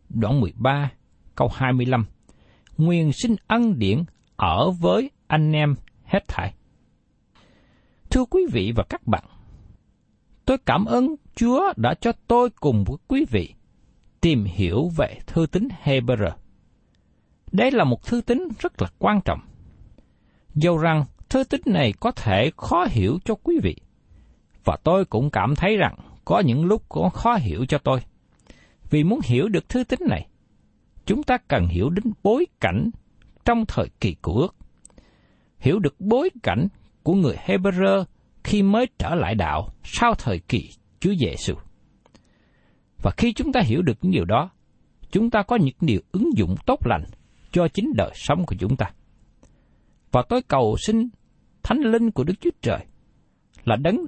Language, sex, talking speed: Vietnamese, male, 160 wpm